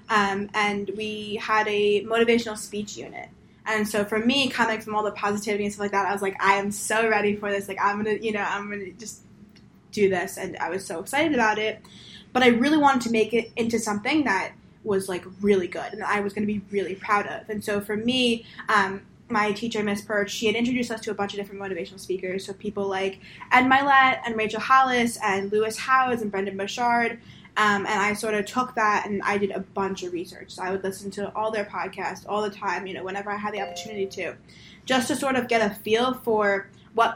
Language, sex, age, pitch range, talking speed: English, female, 10-29, 200-230 Hz, 240 wpm